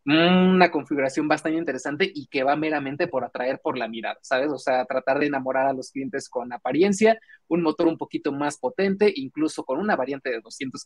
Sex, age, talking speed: male, 20-39, 200 wpm